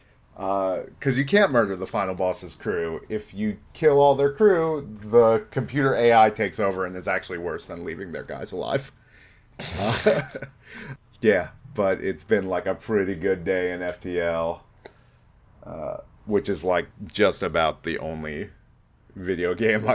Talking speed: 155 wpm